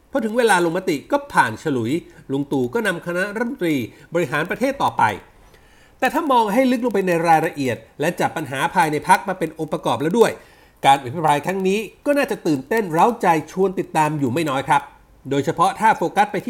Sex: male